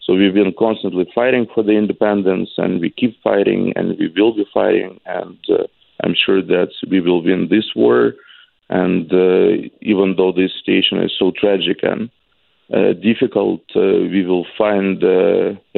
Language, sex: English, male